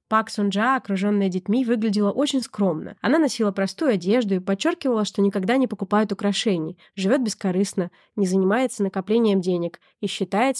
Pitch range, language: 195-250 Hz, Russian